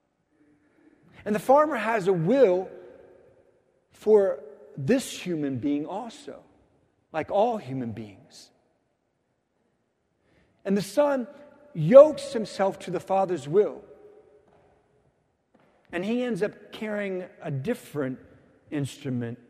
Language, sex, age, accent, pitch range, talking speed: English, male, 50-69, American, 175-270 Hz, 100 wpm